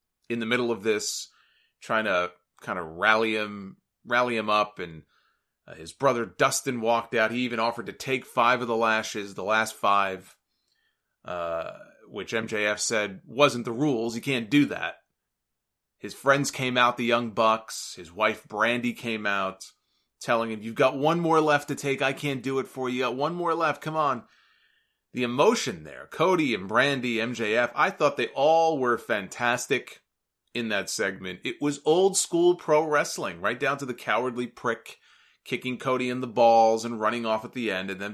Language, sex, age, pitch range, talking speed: English, male, 30-49, 110-140 Hz, 185 wpm